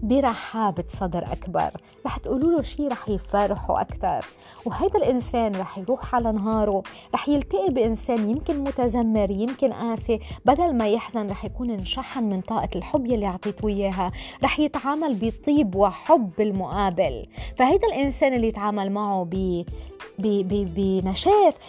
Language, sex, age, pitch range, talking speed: Arabic, female, 20-39, 200-270 Hz, 130 wpm